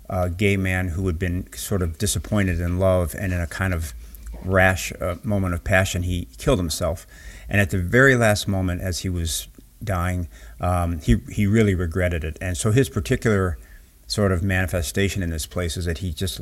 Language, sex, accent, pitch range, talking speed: English, male, American, 80-95 Hz, 195 wpm